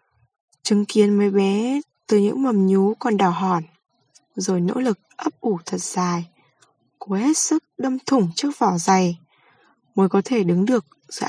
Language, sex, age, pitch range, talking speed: Vietnamese, female, 10-29, 185-235 Hz, 170 wpm